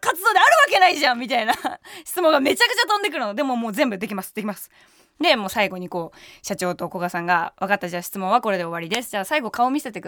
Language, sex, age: Japanese, female, 20-39